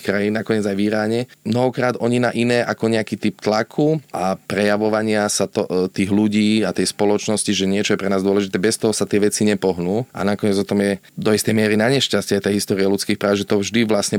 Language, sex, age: Slovak, male, 30-49